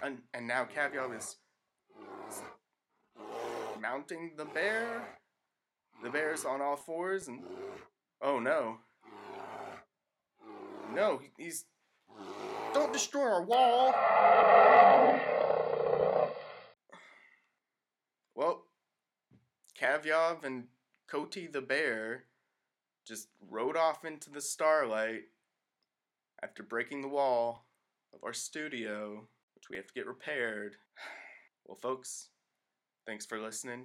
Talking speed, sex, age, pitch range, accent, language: 95 wpm, male, 20-39, 110-155 Hz, American, English